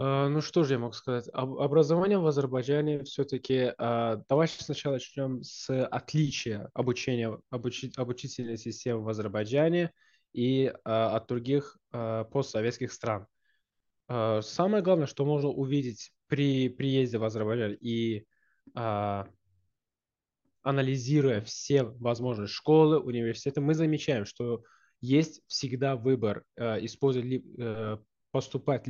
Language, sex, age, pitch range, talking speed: Russian, male, 20-39, 115-140 Hz, 125 wpm